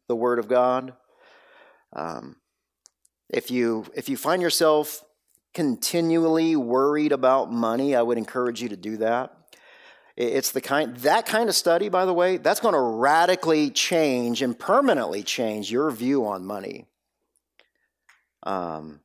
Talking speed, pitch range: 140 wpm, 120-160 Hz